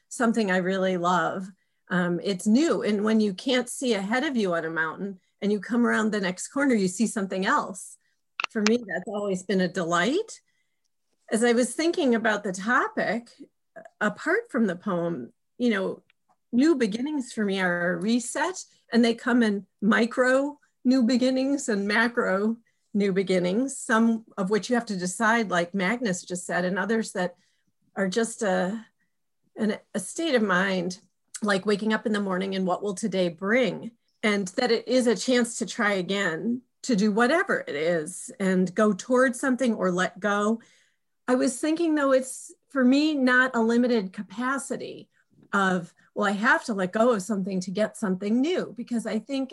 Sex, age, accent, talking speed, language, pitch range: female, 40-59, American, 180 wpm, English, 195-245 Hz